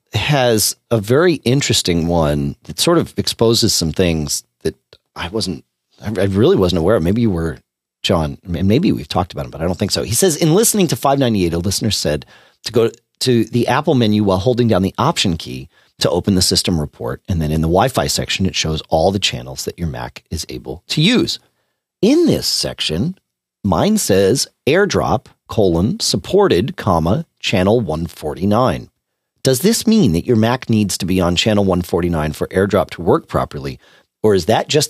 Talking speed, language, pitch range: 190 wpm, English, 85-135 Hz